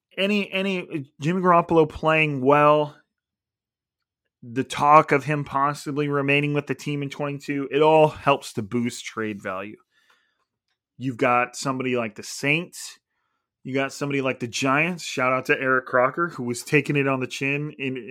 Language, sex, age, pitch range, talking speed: English, male, 30-49, 125-150 Hz, 160 wpm